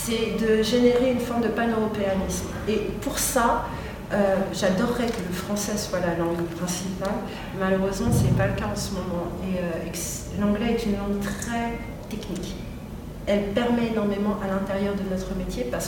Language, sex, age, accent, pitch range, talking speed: French, female, 40-59, French, 170-215 Hz, 175 wpm